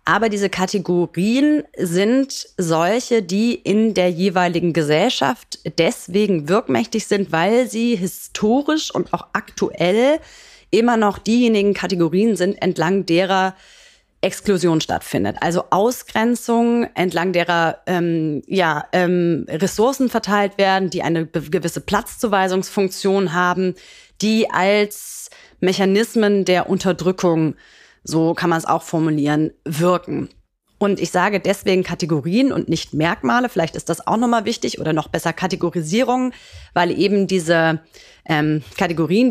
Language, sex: German, female